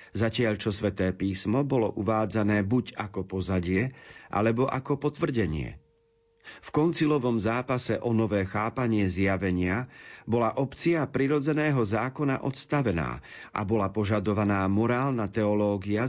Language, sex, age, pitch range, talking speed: Slovak, male, 40-59, 105-135 Hz, 110 wpm